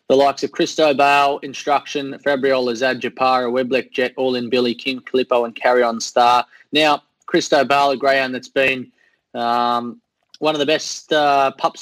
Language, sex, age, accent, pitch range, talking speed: English, male, 20-39, Australian, 130-145 Hz, 160 wpm